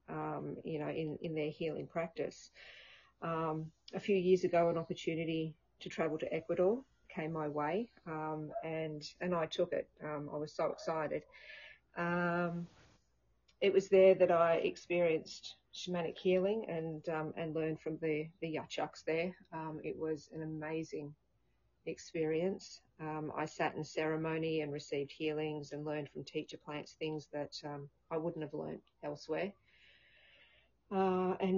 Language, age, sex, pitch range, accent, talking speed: English, 40-59, female, 155-175 Hz, Australian, 150 wpm